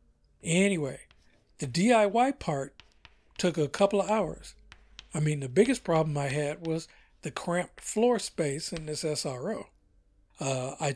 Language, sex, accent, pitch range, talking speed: English, male, American, 145-195 Hz, 140 wpm